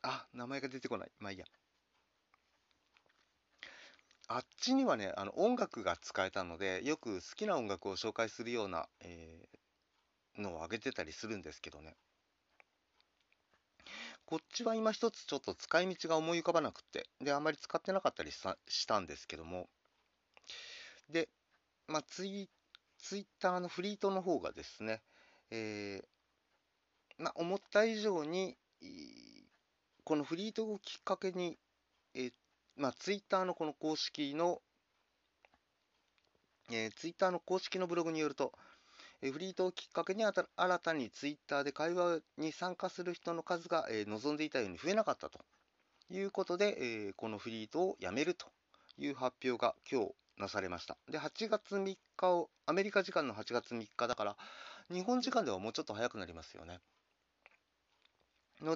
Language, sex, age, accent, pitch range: Japanese, male, 40-59, native, 120-190 Hz